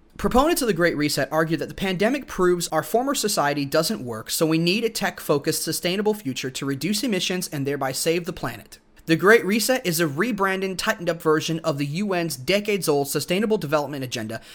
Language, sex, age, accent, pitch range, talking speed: English, male, 30-49, American, 155-200 Hz, 185 wpm